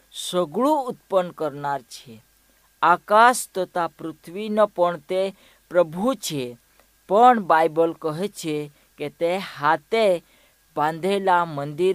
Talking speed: 90 wpm